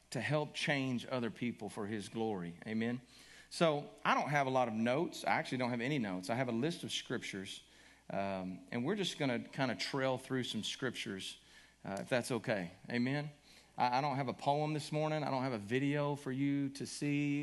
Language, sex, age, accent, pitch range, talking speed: English, male, 40-59, American, 85-140 Hz, 215 wpm